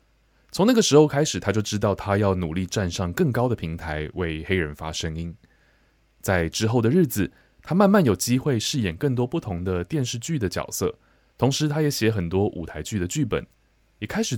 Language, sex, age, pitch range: Chinese, male, 20-39, 90-130 Hz